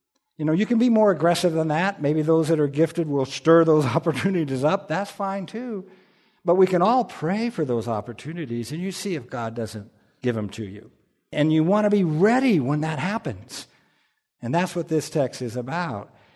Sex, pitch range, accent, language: male, 130-175 Hz, American, English